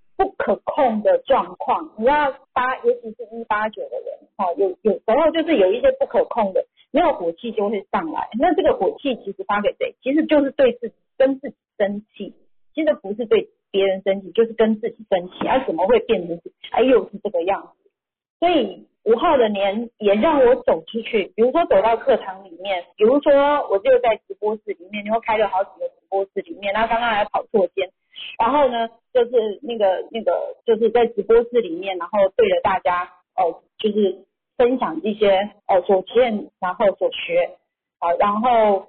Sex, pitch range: female, 195-300 Hz